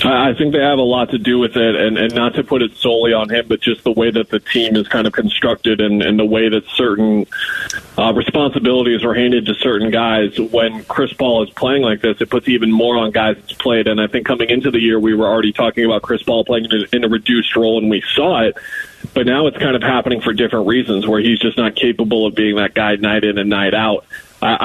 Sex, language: male, English